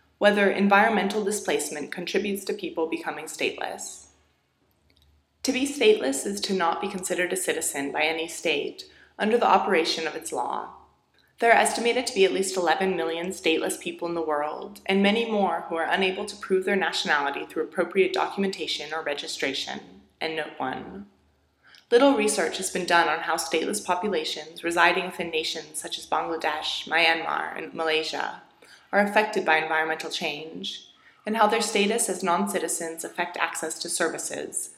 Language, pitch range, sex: English, 155-200 Hz, female